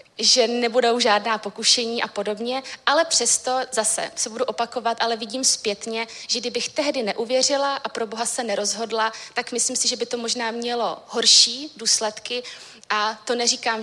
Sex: female